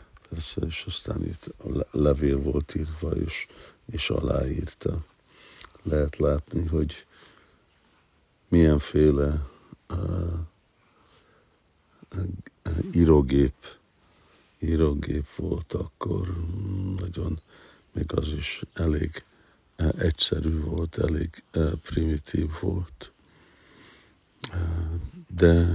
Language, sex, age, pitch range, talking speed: Hungarian, male, 60-79, 75-85 Hz, 80 wpm